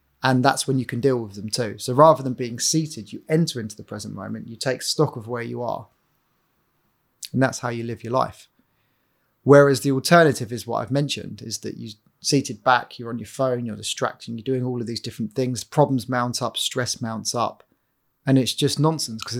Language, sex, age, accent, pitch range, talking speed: English, male, 30-49, British, 115-135 Hz, 215 wpm